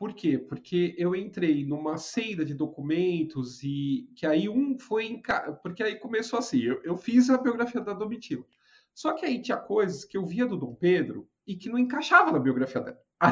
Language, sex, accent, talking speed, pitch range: Portuguese, male, Brazilian, 200 wpm, 145-215 Hz